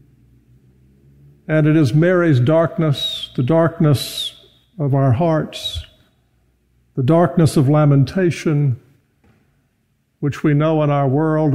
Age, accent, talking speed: 50-69, American, 105 wpm